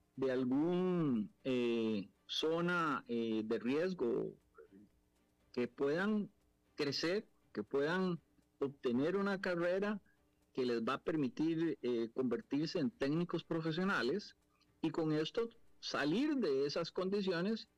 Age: 50-69